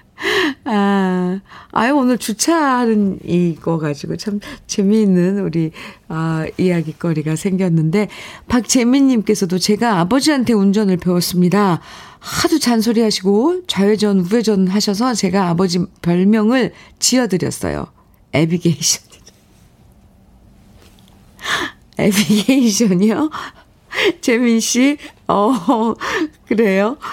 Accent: native